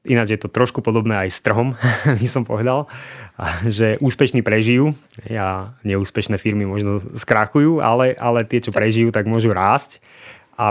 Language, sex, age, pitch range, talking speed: Slovak, male, 20-39, 100-115 Hz, 150 wpm